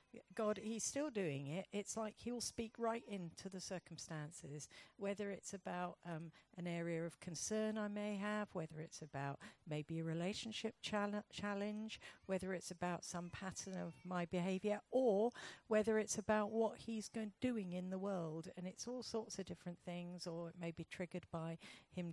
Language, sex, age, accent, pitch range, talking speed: English, female, 50-69, British, 175-210 Hz, 175 wpm